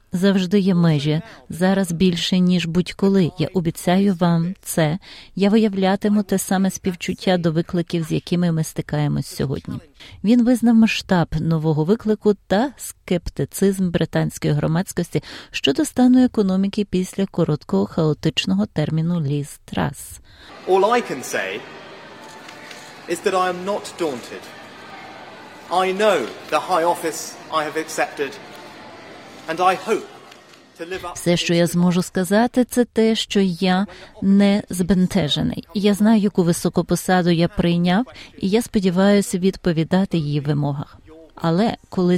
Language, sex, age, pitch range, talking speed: Ukrainian, female, 30-49, 170-200 Hz, 100 wpm